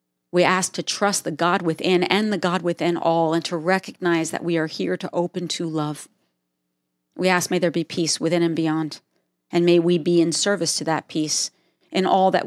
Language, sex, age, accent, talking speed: English, female, 40-59, American, 210 wpm